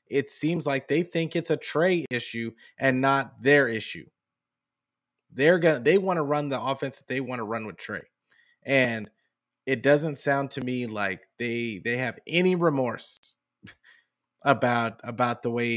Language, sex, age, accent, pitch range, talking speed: English, male, 30-49, American, 120-155 Hz, 170 wpm